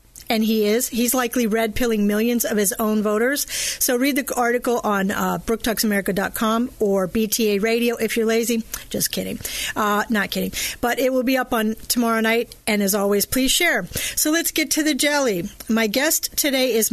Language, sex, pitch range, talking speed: English, female, 215-250 Hz, 185 wpm